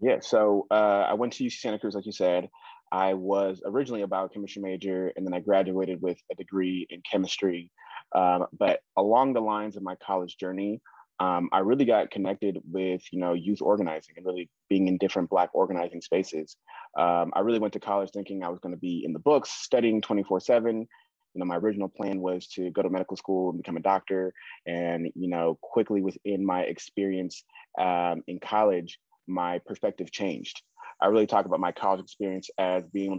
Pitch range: 90-100 Hz